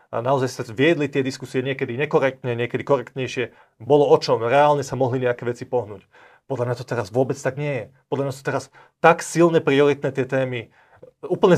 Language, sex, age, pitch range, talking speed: Slovak, male, 30-49, 125-150 Hz, 190 wpm